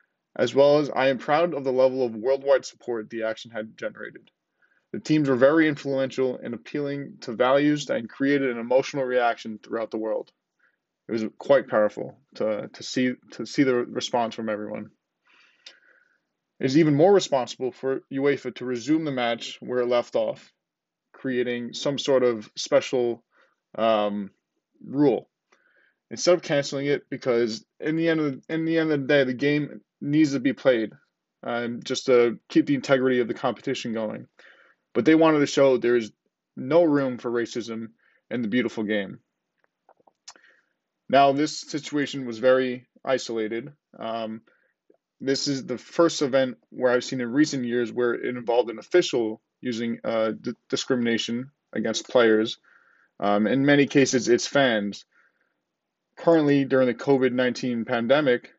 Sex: male